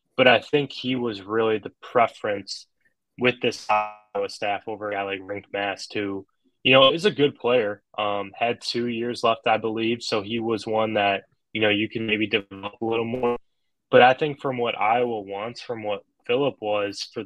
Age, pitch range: 10-29, 105-125 Hz